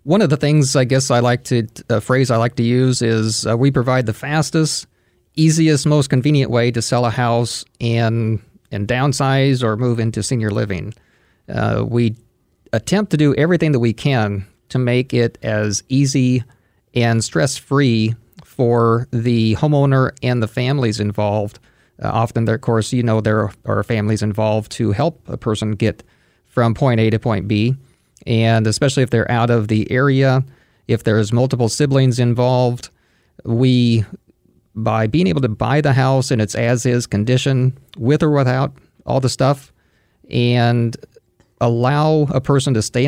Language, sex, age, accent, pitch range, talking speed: English, male, 40-59, American, 115-135 Hz, 165 wpm